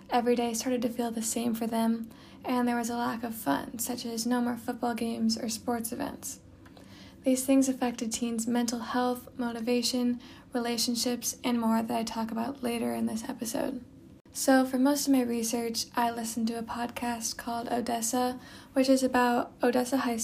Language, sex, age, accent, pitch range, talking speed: English, female, 10-29, American, 235-250 Hz, 180 wpm